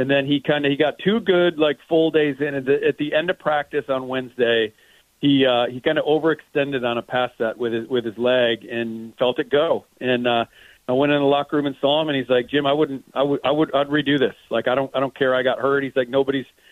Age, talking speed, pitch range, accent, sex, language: 40-59, 275 wpm, 135-155 Hz, American, male, English